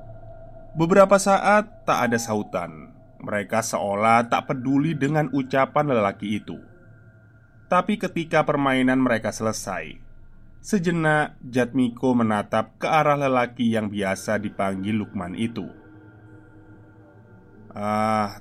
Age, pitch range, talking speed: 20-39, 110-145 Hz, 100 wpm